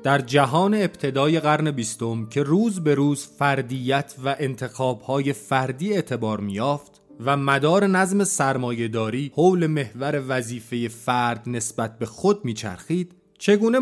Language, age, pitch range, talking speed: Persian, 30-49, 125-165 Hz, 120 wpm